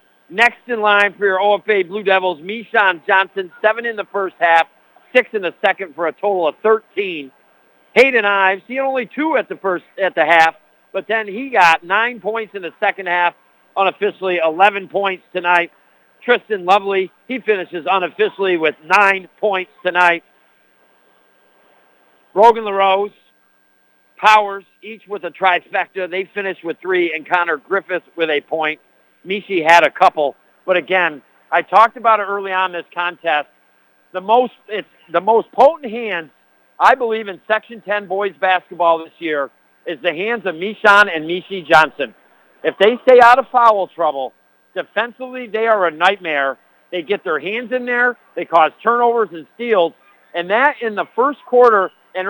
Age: 60-79